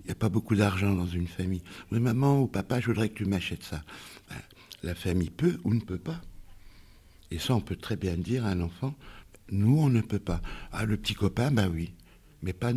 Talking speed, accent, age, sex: 255 wpm, French, 60-79, male